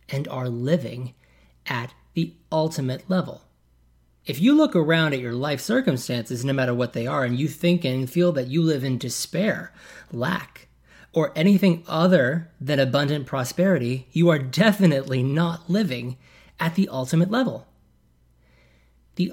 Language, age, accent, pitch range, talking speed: English, 30-49, American, 130-180 Hz, 145 wpm